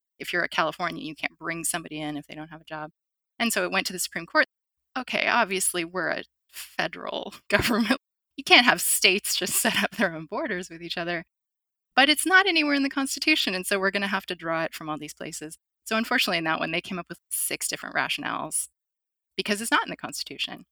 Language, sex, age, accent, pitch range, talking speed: English, female, 20-39, American, 170-220 Hz, 230 wpm